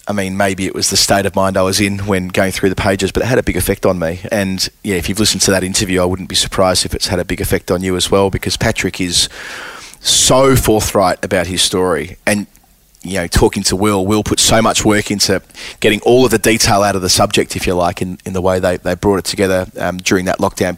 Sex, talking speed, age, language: male, 265 wpm, 20-39, English